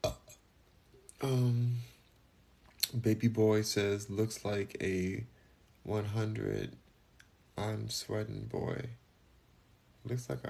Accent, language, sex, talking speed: American, English, male, 80 wpm